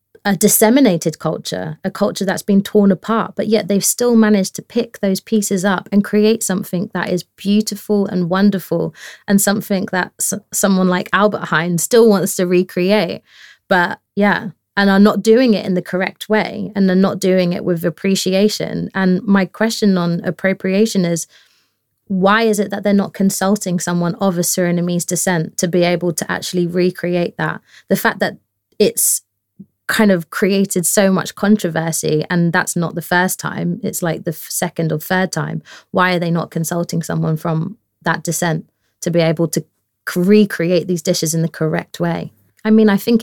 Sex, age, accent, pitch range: female, 20-39, British, 175-205 Hz